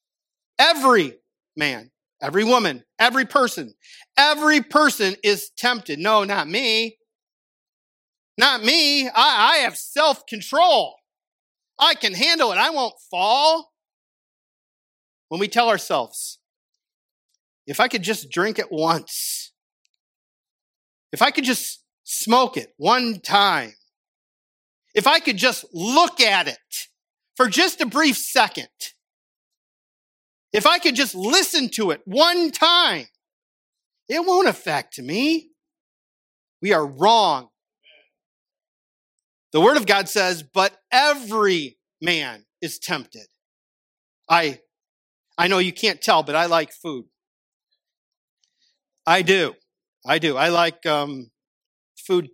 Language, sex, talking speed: English, male, 115 wpm